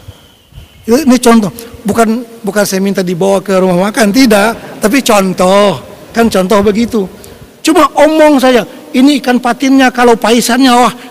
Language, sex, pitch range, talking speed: Malay, male, 205-265 Hz, 135 wpm